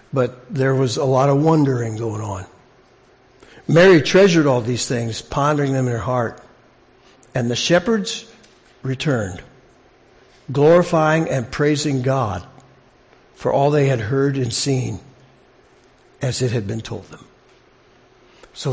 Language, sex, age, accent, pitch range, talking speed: English, male, 60-79, American, 125-155 Hz, 130 wpm